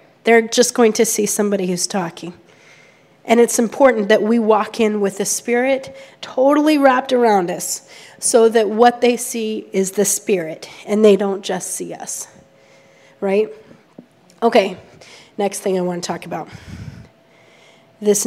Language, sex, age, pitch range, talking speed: English, female, 30-49, 185-230 Hz, 150 wpm